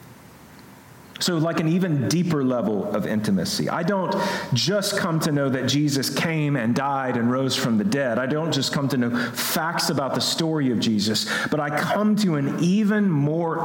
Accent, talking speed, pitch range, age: American, 190 wpm, 135-180 Hz, 40-59